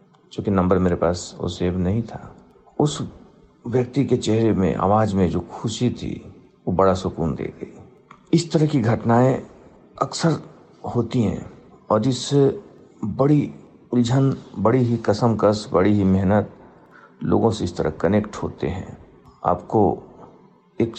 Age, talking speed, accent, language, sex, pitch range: 50-69, 145 wpm, native, Hindi, male, 100-130 Hz